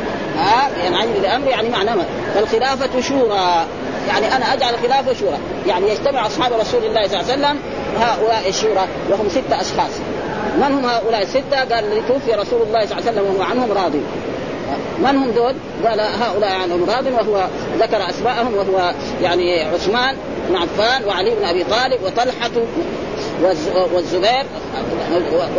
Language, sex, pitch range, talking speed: Arabic, female, 205-265 Hz, 150 wpm